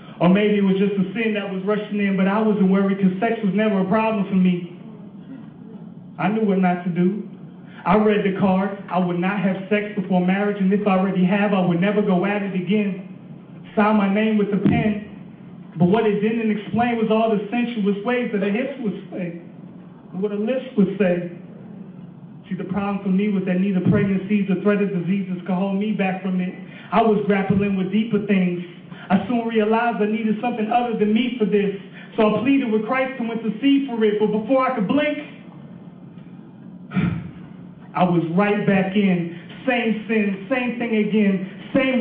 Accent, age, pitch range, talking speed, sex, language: American, 30-49, 185-220 Hz, 200 wpm, male, English